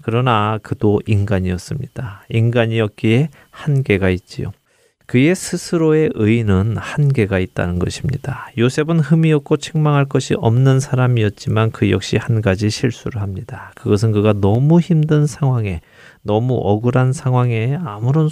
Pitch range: 110-140 Hz